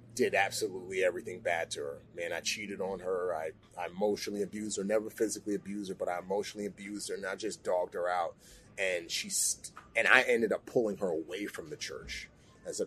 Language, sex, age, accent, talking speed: English, male, 30-49, American, 215 wpm